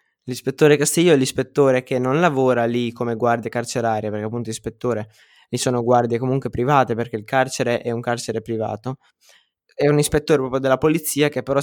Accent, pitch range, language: native, 120-150 Hz, Italian